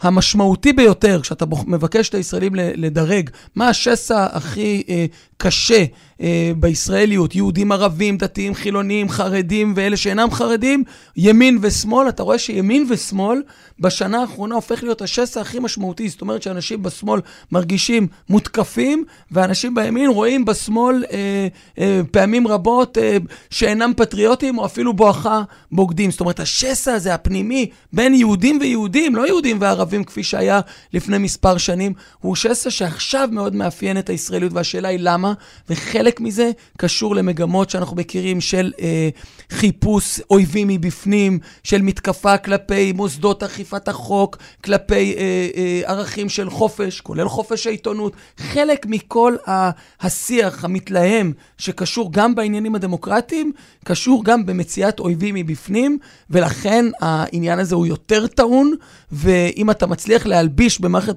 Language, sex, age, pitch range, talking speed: Hebrew, male, 30-49, 180-225 Hz, 130 wpm